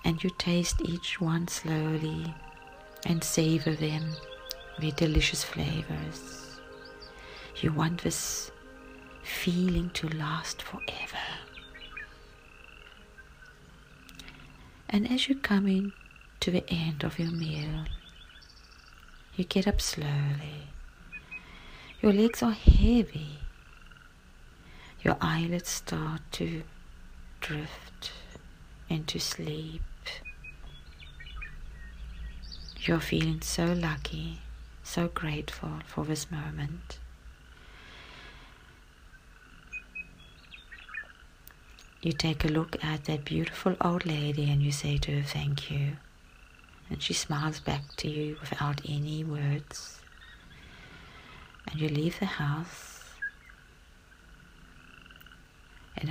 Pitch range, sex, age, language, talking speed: 105-165 Hz, female, 40-59, English, 90 wpm